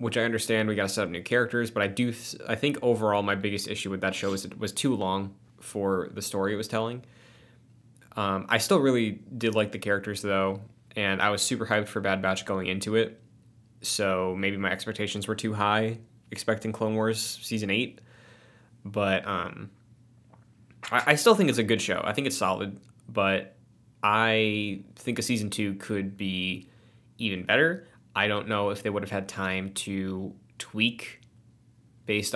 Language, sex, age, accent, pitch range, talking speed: English, male, 20-39, American, 100-115 Hz, 185 wpm